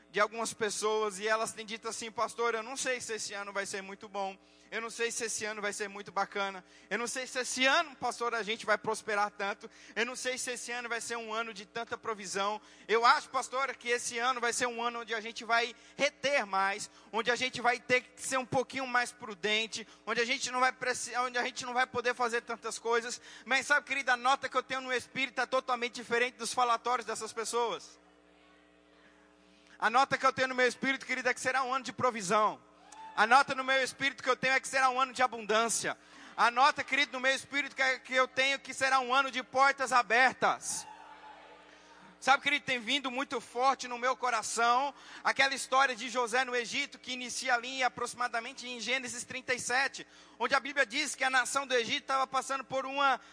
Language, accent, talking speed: Portuguese, Brazilian, 220 wpm